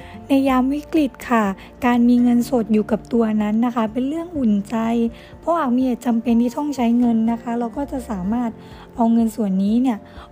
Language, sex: Thai, female